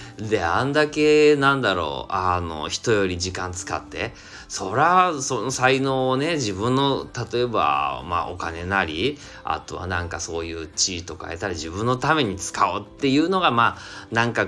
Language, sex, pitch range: Japanese, male, 90-140 Hz